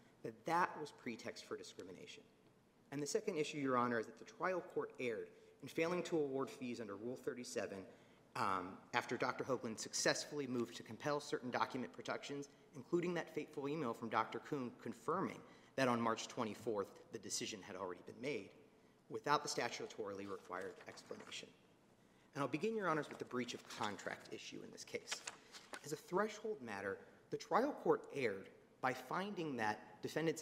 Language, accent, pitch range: English, American, 120-175 Hz